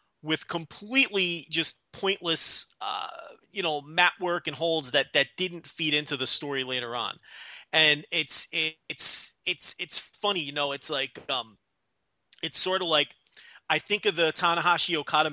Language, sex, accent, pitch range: English, male, American, 135-190 Hz